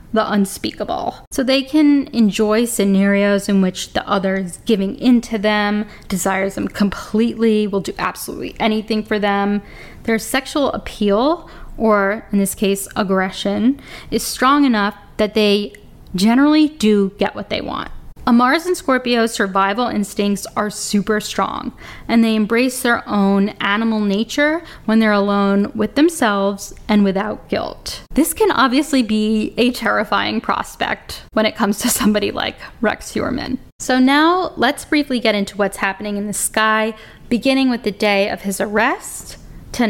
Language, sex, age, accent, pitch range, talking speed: English, female, 10-29, American, 200-245 Hz, 150 wpm